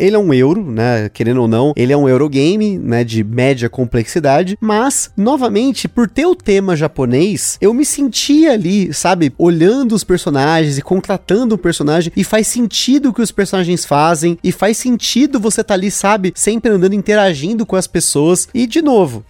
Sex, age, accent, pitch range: male, 30-49, Brazilian, 150-205 Hz